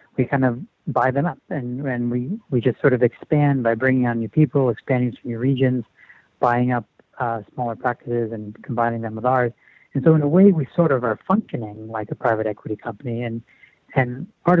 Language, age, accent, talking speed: English, 60-79, American, 210 wpm